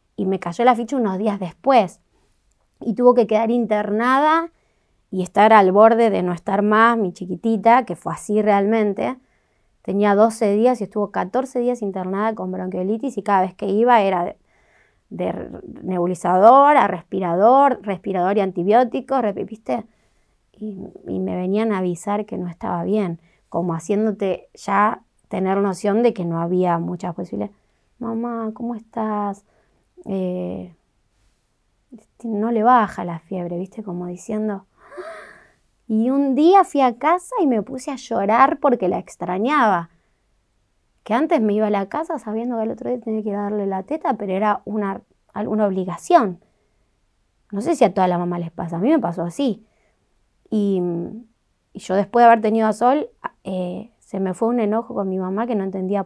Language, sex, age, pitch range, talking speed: Spanish, female, 20-39, 185-235 Hz, 165 wpm